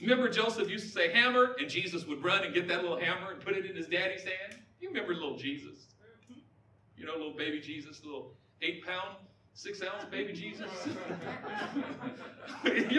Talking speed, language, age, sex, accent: 170 wpm, English, 40-59, male, American